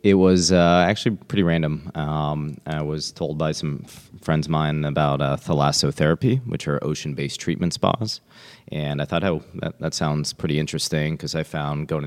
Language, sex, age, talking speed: English, male, 30-49, 190 wpm